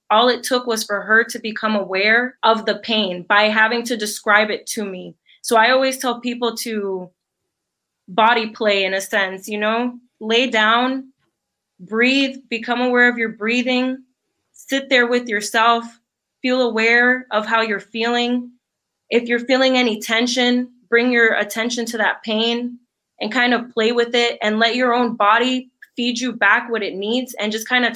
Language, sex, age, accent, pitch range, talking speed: English, female, 20-39, American, 210-245 Hz, 175 wpm